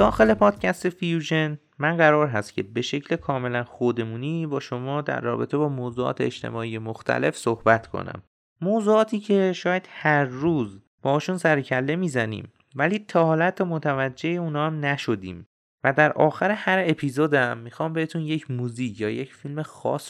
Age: 30-49